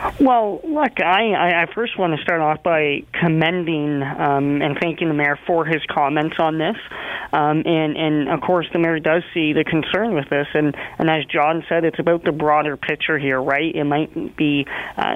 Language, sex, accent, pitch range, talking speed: English, male, American, 150-175 Hz, 200 wpm